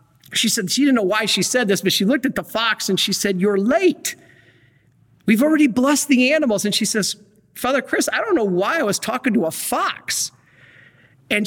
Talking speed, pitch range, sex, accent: 215 wpm, 185-245 Hz, male, American